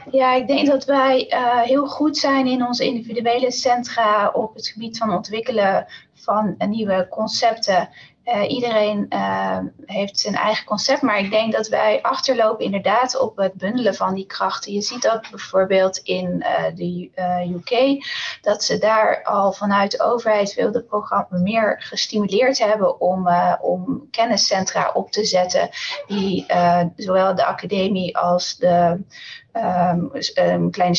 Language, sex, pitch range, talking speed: Dutch, female, 185-250 Hz, 150 wpm